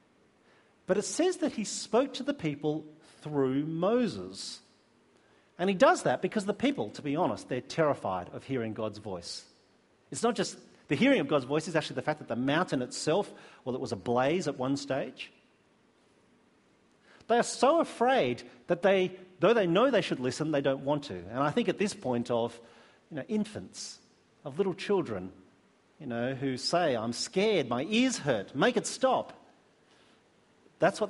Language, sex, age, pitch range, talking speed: English, male, 40-59, 135-215 Hz, 180 wpm